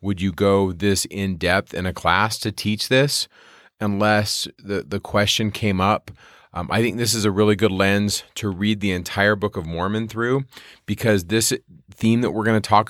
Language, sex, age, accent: English, male, 30-49, American